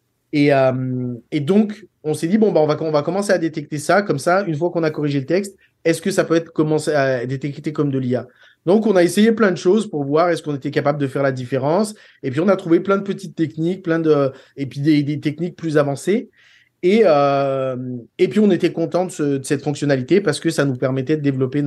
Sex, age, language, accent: male, 20-39, French, French